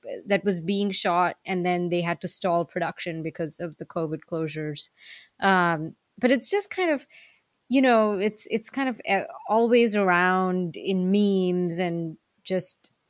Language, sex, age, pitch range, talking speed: English, female, 20-39, 175-225 Hz, 155 wpm